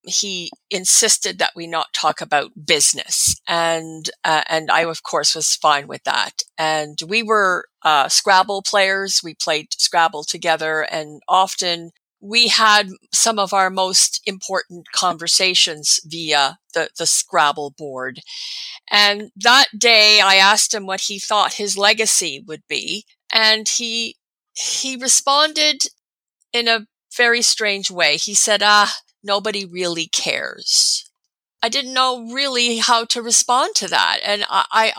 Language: English